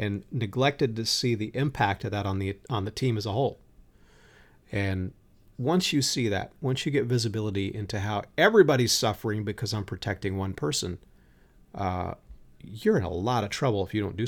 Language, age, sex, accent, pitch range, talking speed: English, 40-59, male, American, 100-130 Hz, 190 wpm